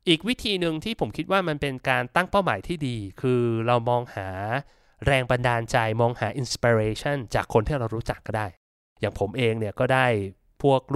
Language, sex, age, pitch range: Thai, male, 20-39, 115-145 Hz